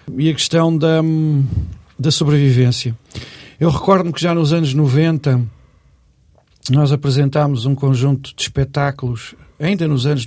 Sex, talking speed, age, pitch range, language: male, 130 wpm, 50-69, 130-155 Hz, Portuguese